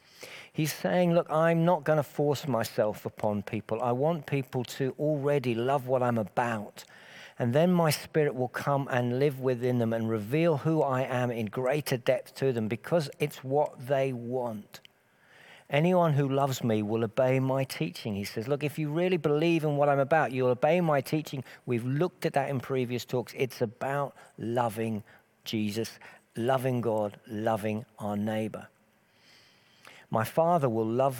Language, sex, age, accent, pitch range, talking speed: English, male, 50-69, British, 110-145 Hz, 170 wpm